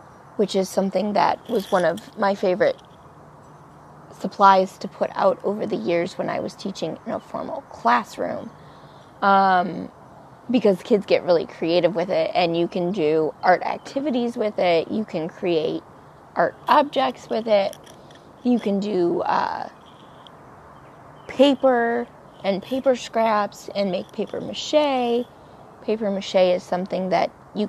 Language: English